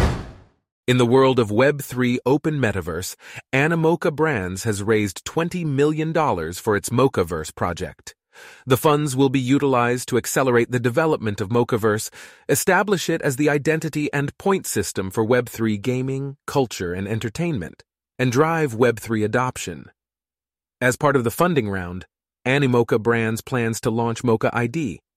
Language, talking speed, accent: English, 140 wpm, American